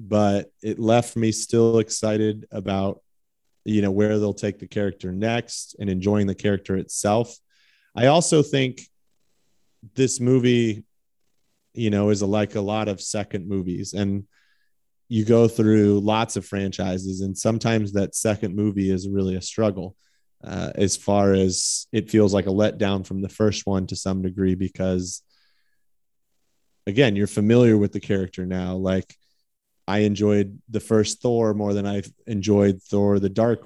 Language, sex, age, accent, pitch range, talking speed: English, male, 30-49, American, 100-115 Hz, 155 wpm